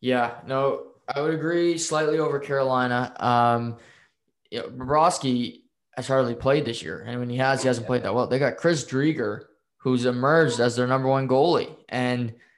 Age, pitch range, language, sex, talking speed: 20-39, 120-140 Hz, English, male, 190 wpm